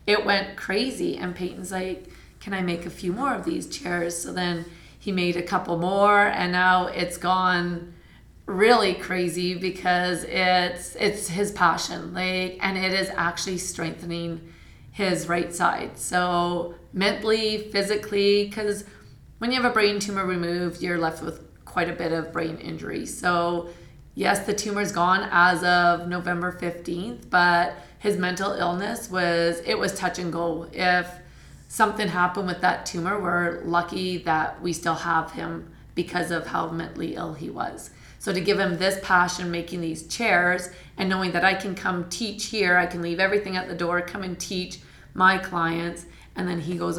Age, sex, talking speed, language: 30-49, female, 170 wpm, English